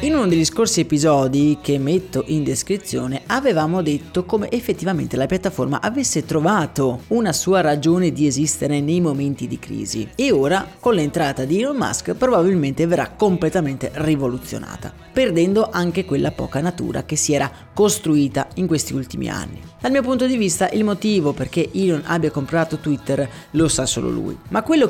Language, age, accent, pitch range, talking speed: Italian, 30-49, native, 145-200 Hz, 165 wpm